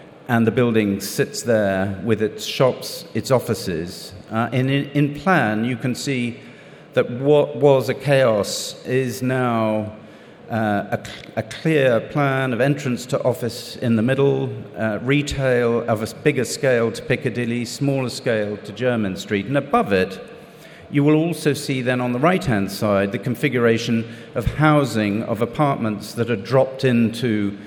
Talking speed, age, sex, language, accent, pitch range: 155 wpm, 50-69, male, English, British, 110-145 Hz